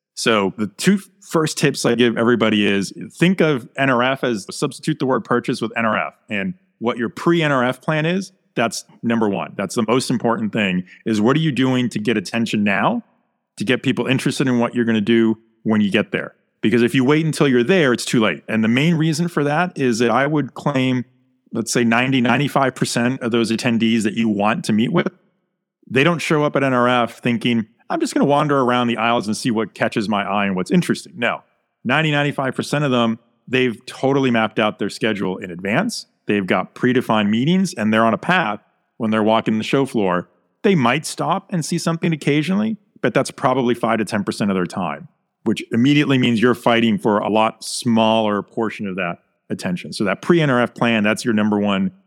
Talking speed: 205 wpm